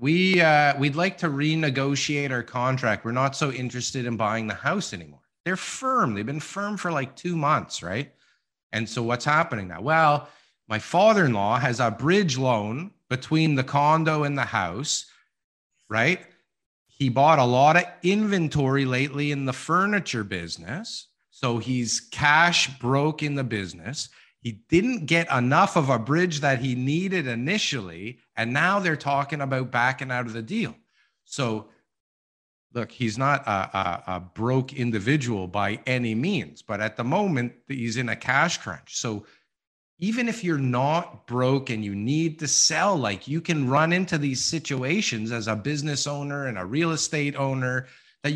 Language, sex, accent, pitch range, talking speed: English, male, American, 120-160 Hz, 165 wpm